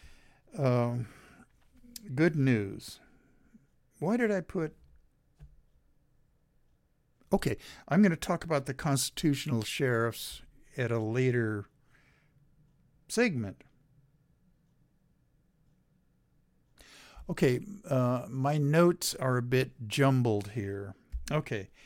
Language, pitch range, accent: English, 120-155 Hz, American